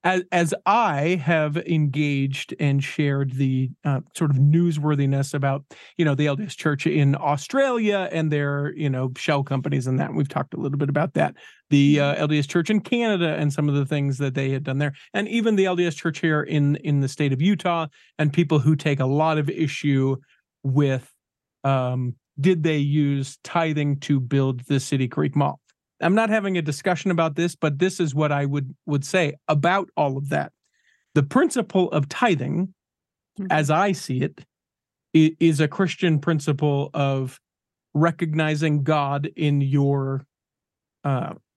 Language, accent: English, American